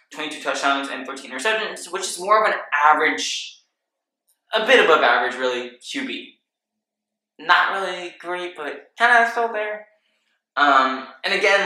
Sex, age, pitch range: male, 10-29, 135-185 Hz